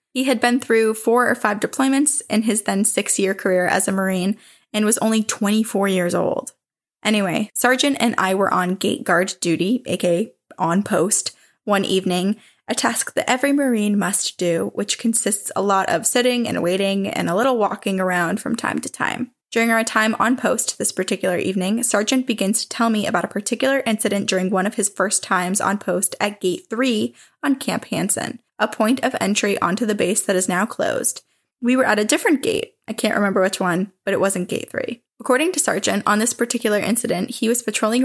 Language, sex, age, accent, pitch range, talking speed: English, female, 10-29, American, 195-235 Hz, 200 wpm